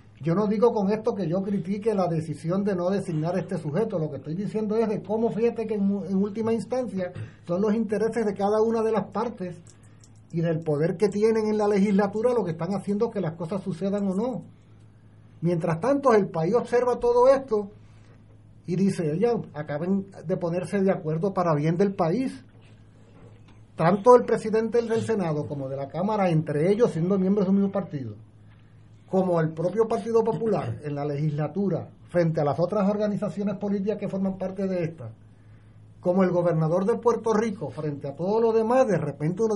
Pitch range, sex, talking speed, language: 145-215 Hz, male, 190 wpm, Spanish